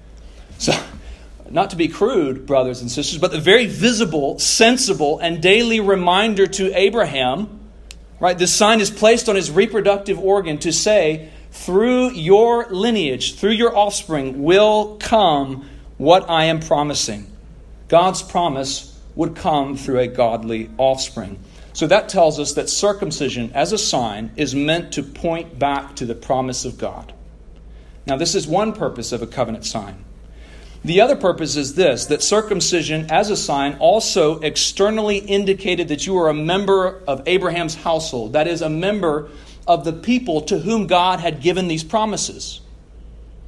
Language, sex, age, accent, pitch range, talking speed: English, male, 40-59, American, 130-195 Hz, 155 wpm